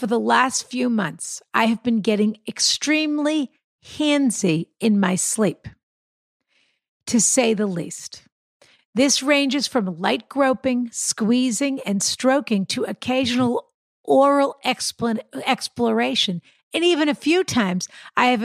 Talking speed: 120 wpm